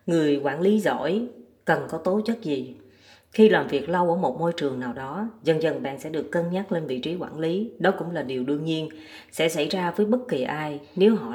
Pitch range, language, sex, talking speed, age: 150-215 Hz, Vietnamese, female, 245 wpm, 20-39